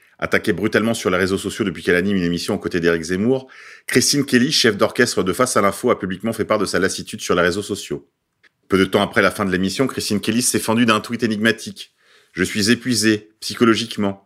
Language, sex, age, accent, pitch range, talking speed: French, male, 40-59, French, 100-125 Hz, 225 wpm